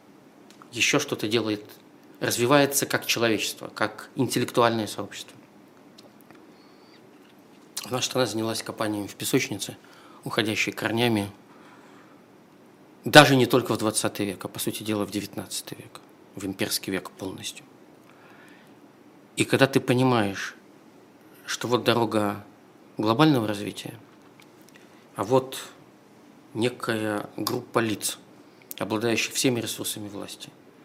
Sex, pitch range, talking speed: male, 105-125 Hz, 100 wpm